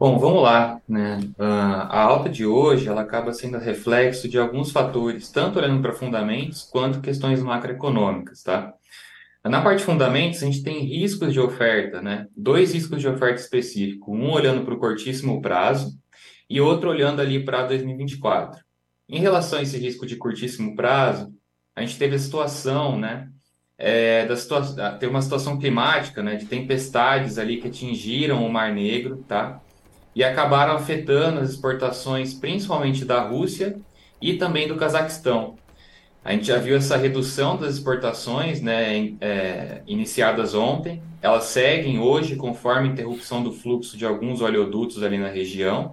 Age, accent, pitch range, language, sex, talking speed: 20-39, Brazilian, 115-140 Hz, Portuguese, male, 160 wpm